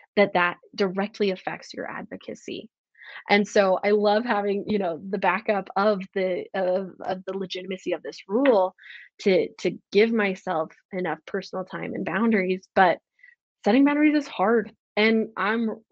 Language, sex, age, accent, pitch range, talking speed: English, female, 20-39, American, 190-225 Hz, 150 wpm